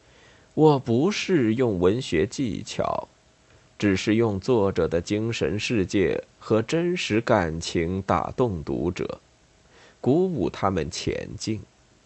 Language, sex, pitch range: Chinese, male, 100-125 Hz